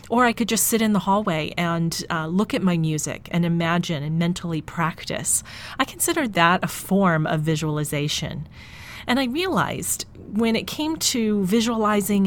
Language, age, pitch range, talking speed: English, 30-49, 165-215 Hz, 165 wpm